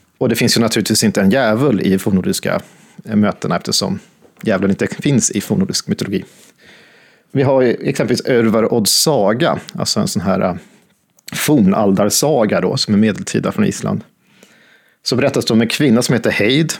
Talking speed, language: 155 wpm, Swedish